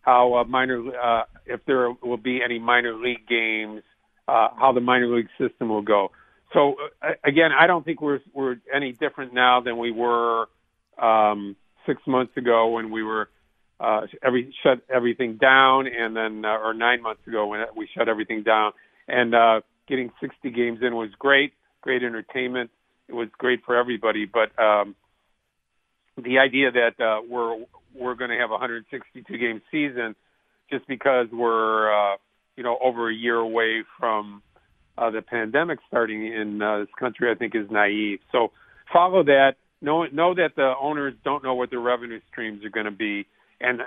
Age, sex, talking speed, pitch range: 50-69, male, 180 wpm, 110-130 Hz